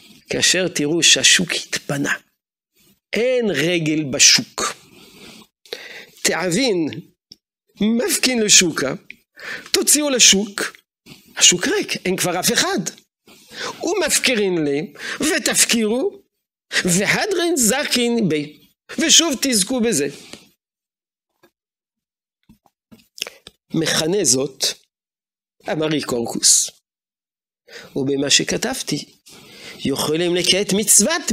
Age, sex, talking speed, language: 50-69, male, 70 wpm, Hebrew